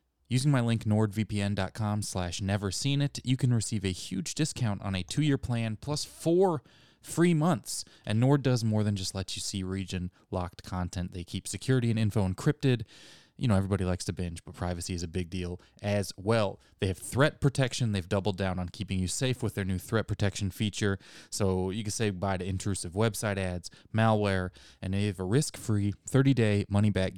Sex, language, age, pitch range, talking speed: male, English, 20-39, 95-120 Hz, 190 wpm